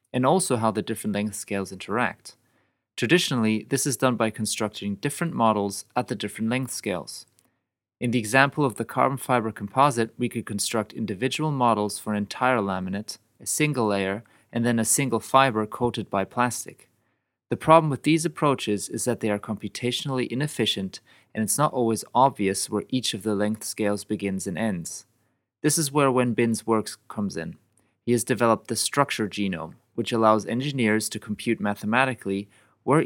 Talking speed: 170 wpm